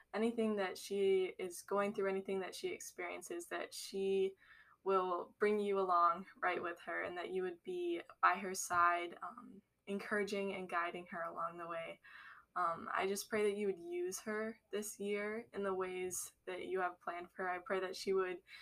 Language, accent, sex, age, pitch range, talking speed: English, American, female, 10-29, 180-215 Hz, 195 wpm